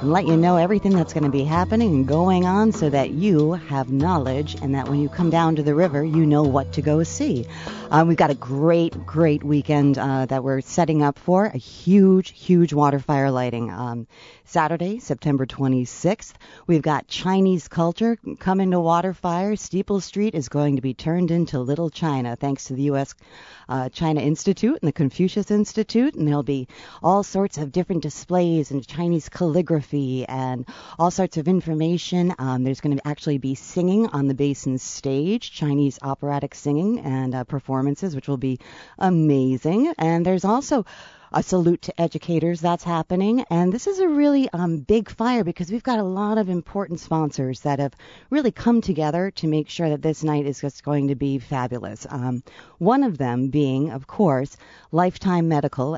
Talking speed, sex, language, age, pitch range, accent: 185 wpm, female, English, 40-59, 135-180 Hz, American